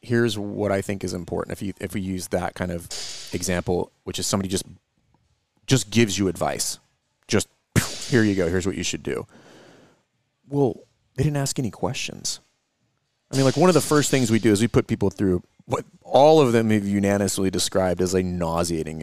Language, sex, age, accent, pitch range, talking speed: English, male, 30-49, American, 90-110 Hz, 200 wpm